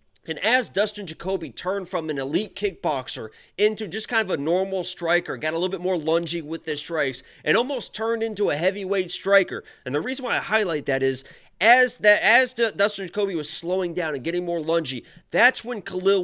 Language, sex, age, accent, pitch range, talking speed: English, male, 30-49, American, 165-220 Hz, 205 wpm